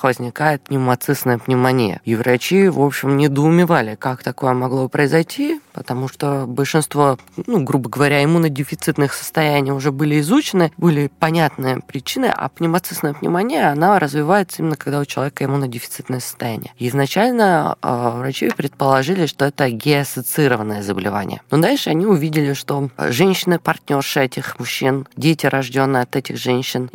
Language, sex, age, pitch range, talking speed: Russian, female, 20-39, 125-160 Hz, 125 wpm